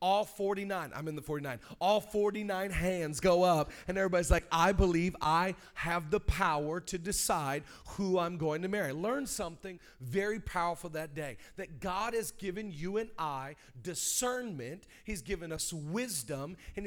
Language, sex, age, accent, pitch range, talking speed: English, male, 40-59, American, 170-215 Hz, 165 wpm